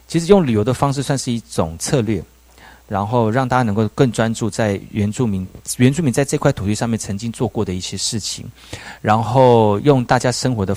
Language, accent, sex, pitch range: Chinese, native, male, 100-130 Hz